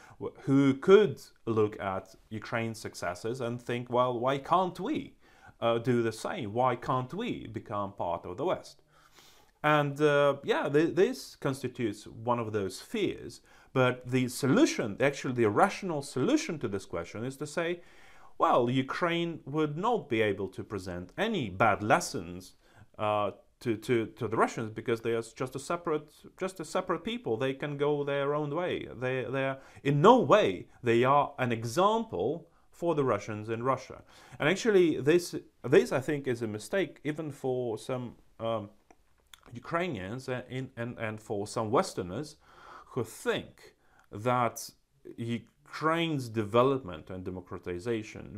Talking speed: 150 wpm